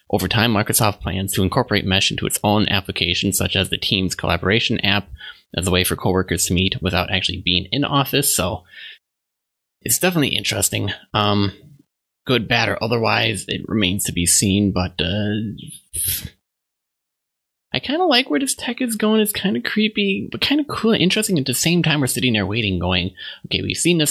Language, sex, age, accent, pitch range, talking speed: English, male, 20-39, American, 90-120 Hz, 195 wpm